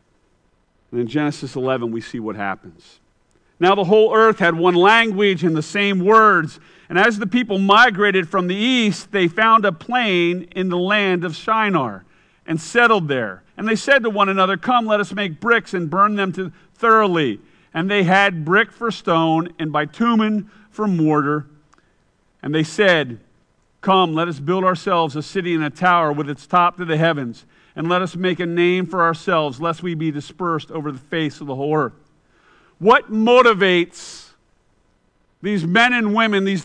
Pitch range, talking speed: 165-215 Hz, 180 wpm